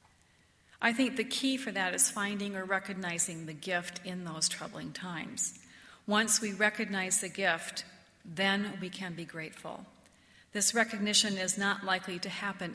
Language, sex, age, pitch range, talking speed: English, female, 40-59, 175-220 Hz, 155 wpm